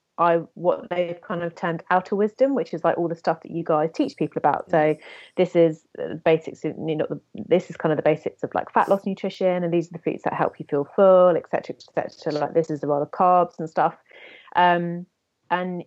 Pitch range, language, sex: 160-185 Hz, English, female